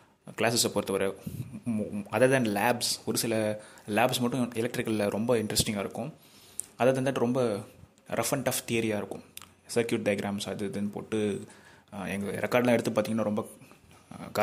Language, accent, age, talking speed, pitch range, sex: Tamil, native, 30-49, 125 wpm, 105-120 Hz, male